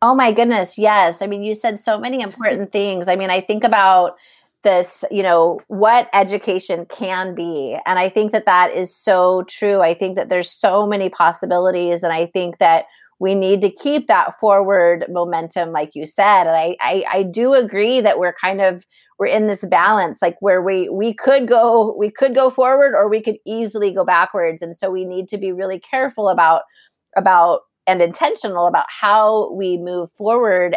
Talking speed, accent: 195 wpm, American